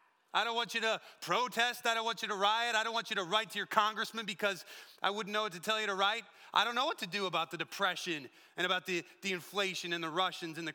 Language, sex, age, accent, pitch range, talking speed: English, male, 30-49, American, 150-215 Hz, 280 wpm